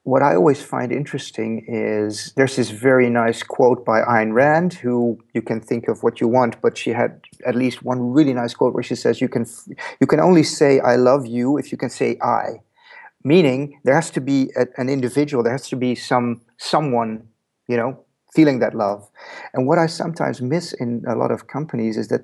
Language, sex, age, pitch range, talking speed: English, male, 40-59, 115-135 Hz, 215 wpm